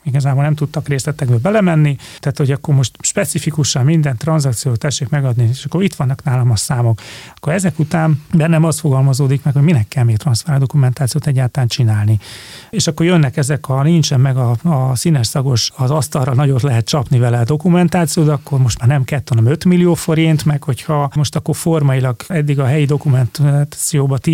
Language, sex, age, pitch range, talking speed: Hungarian, male, 30-49, 130-155 Hz, 180 wpm